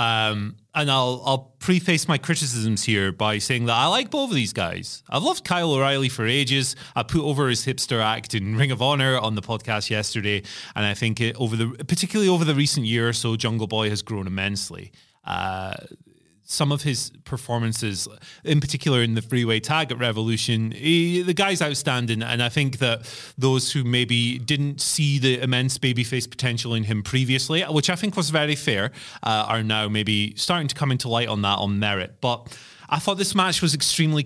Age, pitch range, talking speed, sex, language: 30-49, 115-150 Hz, 200 wpm, male, English